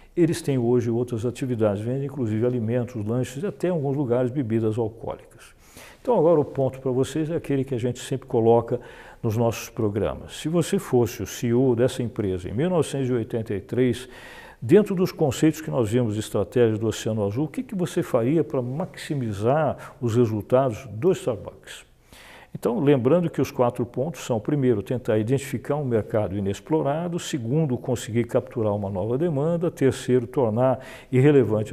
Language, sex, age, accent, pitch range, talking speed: Portuguese, male, 60-79, Brazilian, 115-150 Hz, 160 wpm